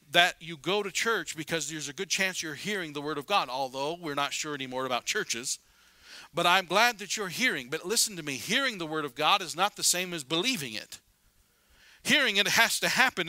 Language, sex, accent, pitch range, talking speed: English, male, American, 135-185 Hz, 225 wpm